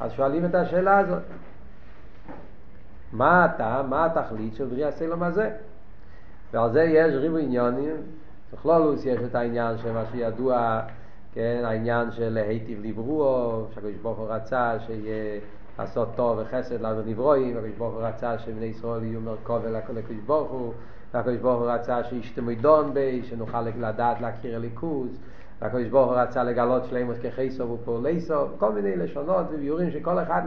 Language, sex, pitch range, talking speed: Hebrew, male, 115-160 Hz, 140 wpm